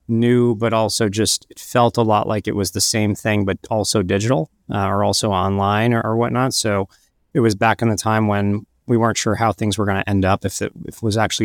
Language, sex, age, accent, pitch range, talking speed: English, male, 30-49, American, 95-115 Hz, 245 wpm